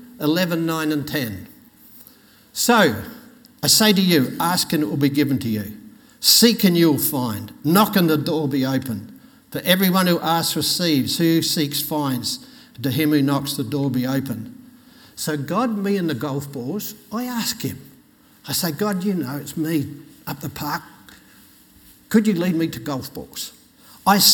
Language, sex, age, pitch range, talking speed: English, male, 60-79, 150-215 Hz, 175 wpm